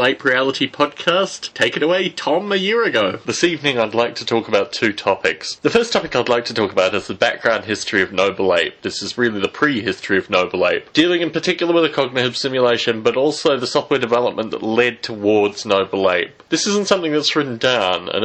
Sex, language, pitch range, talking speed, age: male, English, 110-170 Hz, 215 wpm, 20-39